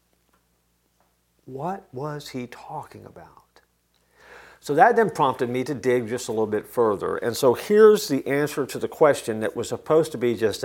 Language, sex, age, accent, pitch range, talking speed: English, male, 50-69, American, 120-155 Hz, 175 wpm